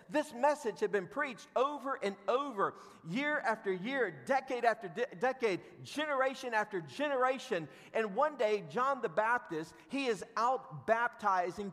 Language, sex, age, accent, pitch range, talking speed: English, male, 40-59, American, 190-265 Hz, 145 wpm